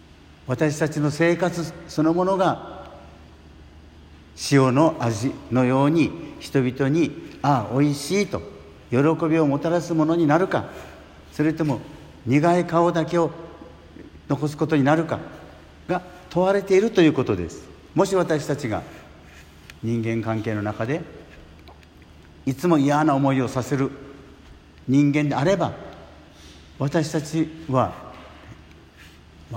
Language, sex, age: Japanese, male, 60-79